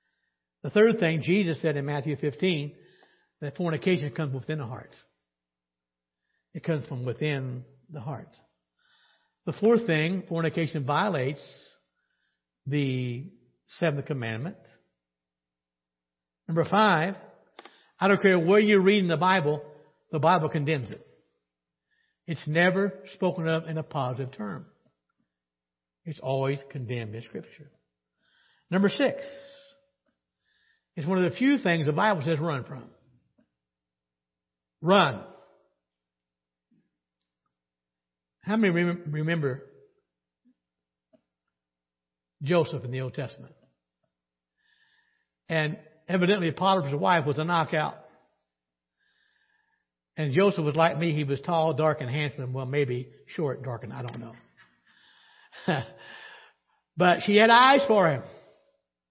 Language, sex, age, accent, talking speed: English, male, 60-79, American, 110 wpm